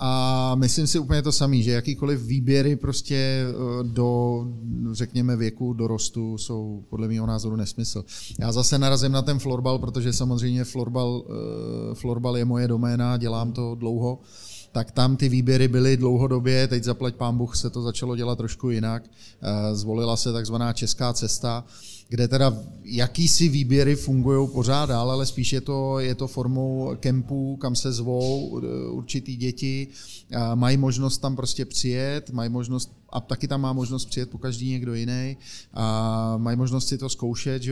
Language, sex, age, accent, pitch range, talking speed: Czech, male, 30-49, native, 120-130 Hz, 160 wpm